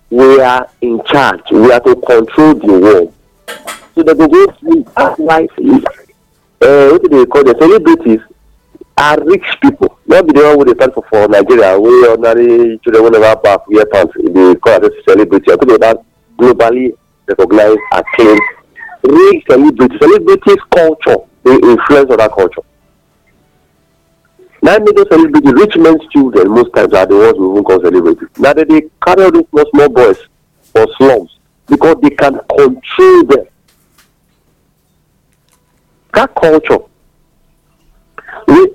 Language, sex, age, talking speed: English, male, 50-69, 140 wpm